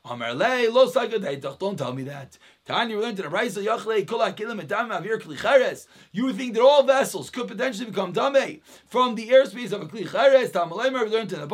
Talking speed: 135 wpm